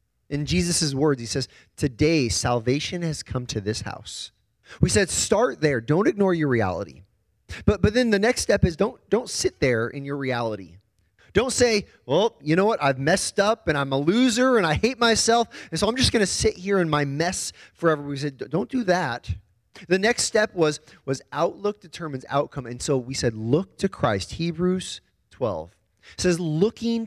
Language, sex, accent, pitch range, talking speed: English, male, American, 125-180 Hz, 195 wpm